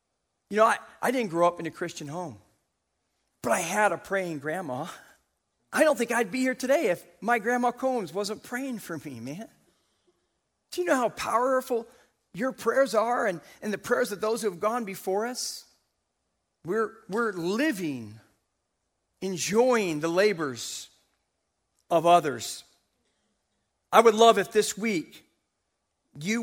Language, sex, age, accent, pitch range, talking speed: English, male, 40-59, American, 145-220 Hz, 150 wpm